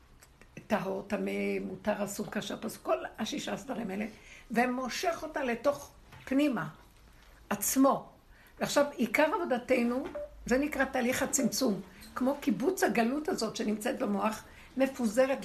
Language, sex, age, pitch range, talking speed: Hebrew, female, 60-79, 210-260 Hz, 115 wpm